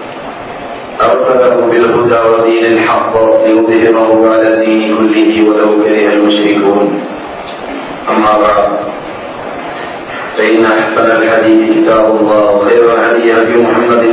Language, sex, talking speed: Malayalam, male, 85 wpm